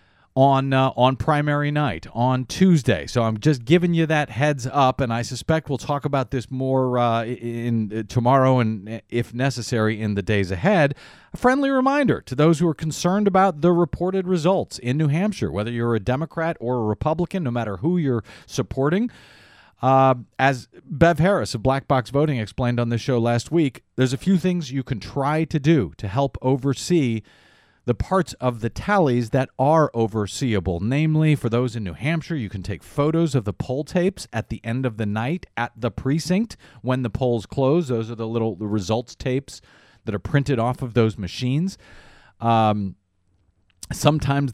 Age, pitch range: 40-59, 115-150 Hz